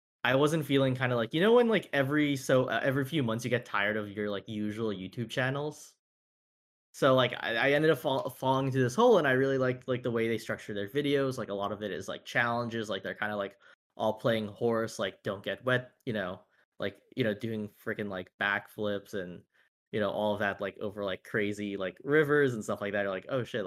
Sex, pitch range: male, 105-130 Hz